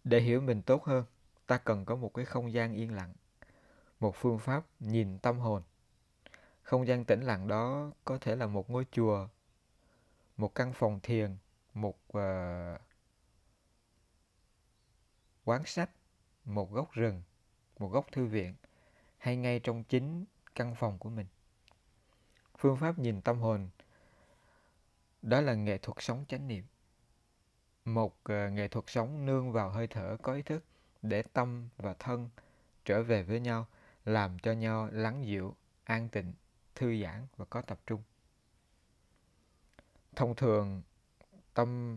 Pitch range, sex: 105-125 Hz, male